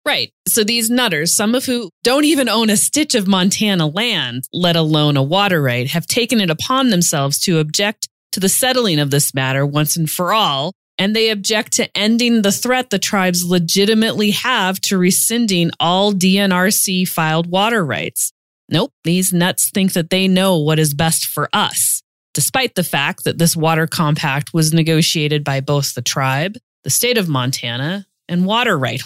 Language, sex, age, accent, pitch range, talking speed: English, female, 30-49, American, 150-205 Hz, 180 wpm